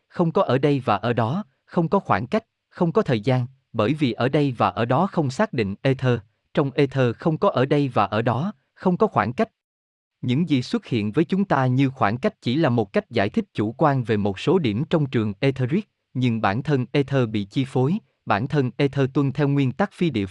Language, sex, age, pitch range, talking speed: Vietnamese, male, 20-39, 115-165 Hz, 235 wpm